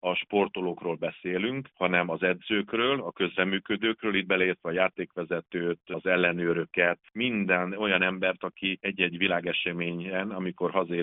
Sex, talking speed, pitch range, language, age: male, 120 wpm, 90-105 Hz, Hungarian, 40-59